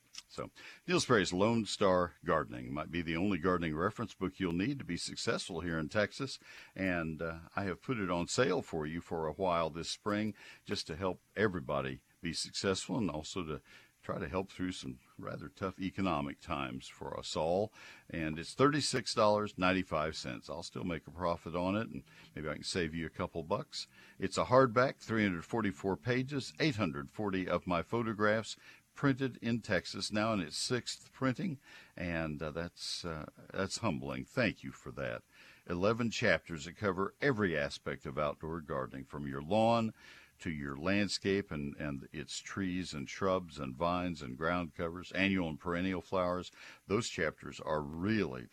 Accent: American